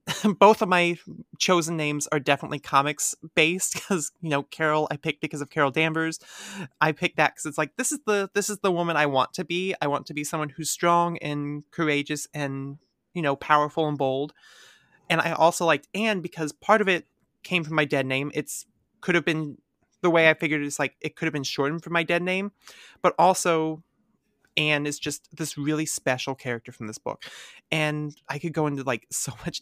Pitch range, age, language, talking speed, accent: 140-170 Hz, 30-49, English, 210 wpm, American